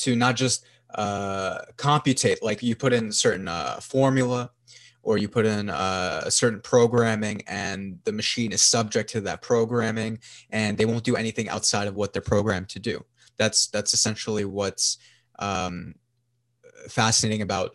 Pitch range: 105-120 Hz